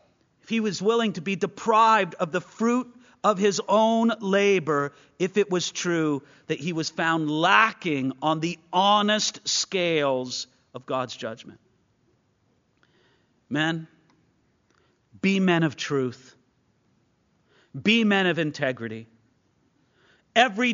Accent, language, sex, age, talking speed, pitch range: American, English, male, 40-59, 115 wpm, 175-265 Hz